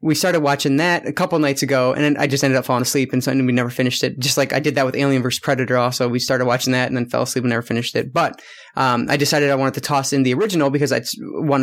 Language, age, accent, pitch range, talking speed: English, 20-39, American, 130-160 Hz, 300 wpm